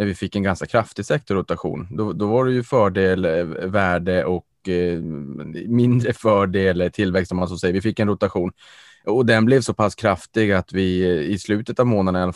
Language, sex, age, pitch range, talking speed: Swedish, male, 20-39, 90-100 Hz, 190 wpm